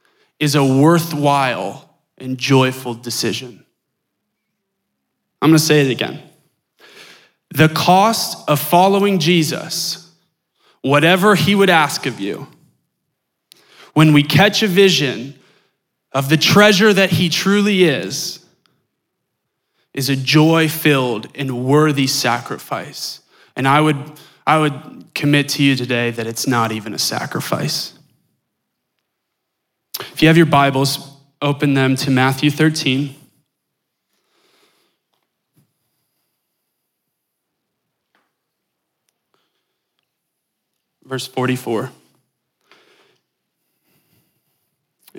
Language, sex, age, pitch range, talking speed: English, male, 20-39, 130-160 Hz, 90 wpm